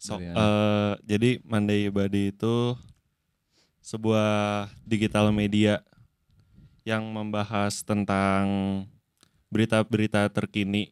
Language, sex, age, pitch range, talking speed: English, male, 20-39, 105-120 Hz, 80 wpm